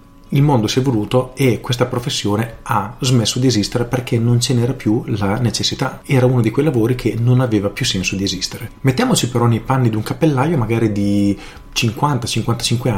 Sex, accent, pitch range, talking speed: male, native, 110-140 Hz, 190 wpm